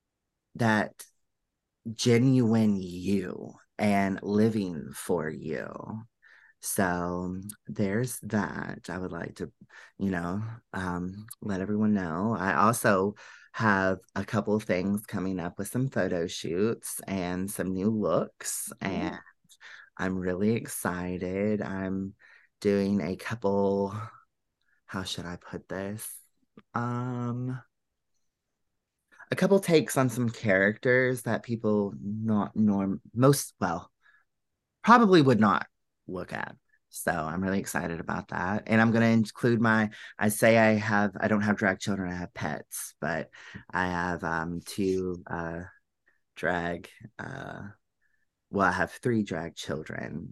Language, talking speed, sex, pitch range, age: English, 125 wpm, male, 90-110 Hz, 30-49